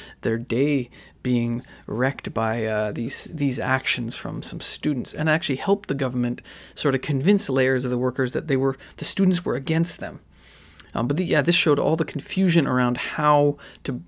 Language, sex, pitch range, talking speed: English, male, 125-145 Hz, 190 wpm